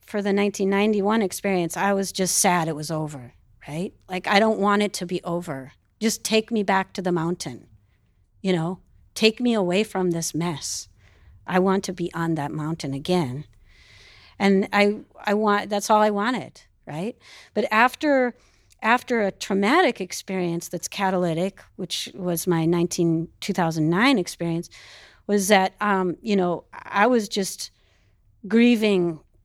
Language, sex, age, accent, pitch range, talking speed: English, female, 40-59, American, 155-205 Hz, 155 wpm